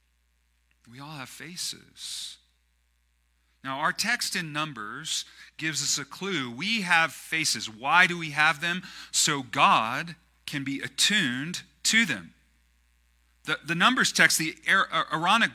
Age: 40-59